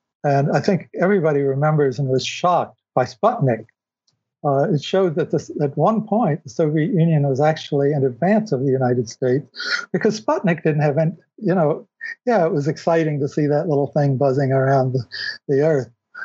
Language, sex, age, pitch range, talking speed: English, male, 60-79, 135-175 Hz, 180 wpm